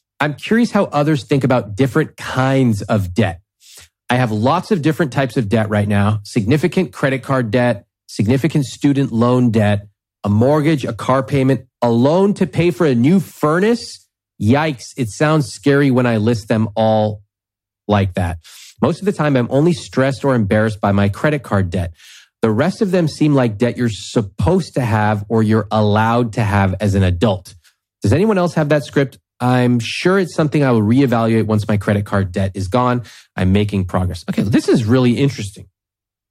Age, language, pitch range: 30-49, English, 100-140 Hz